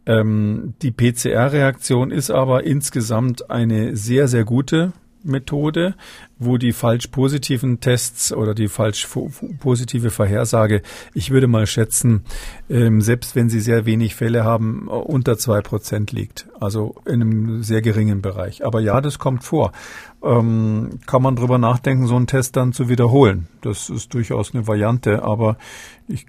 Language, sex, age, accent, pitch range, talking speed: German, male, 50-69, German, 110-125 Hz, 145 wpm